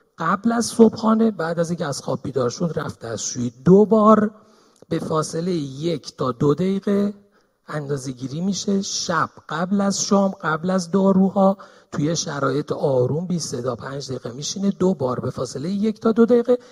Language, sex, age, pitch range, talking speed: Persian, male, 40-59, 155-220 Hz, 160 wpm